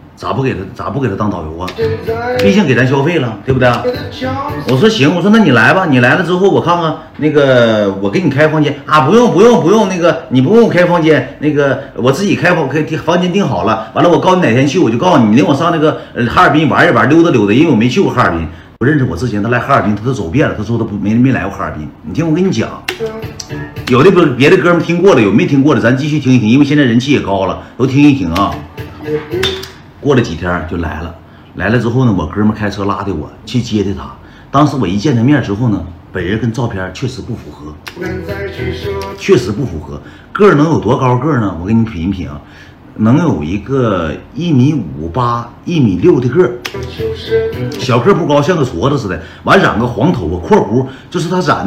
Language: Chinese